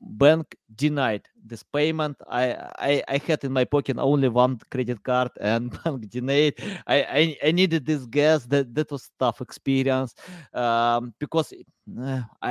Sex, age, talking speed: male, 30-49, 155 wpm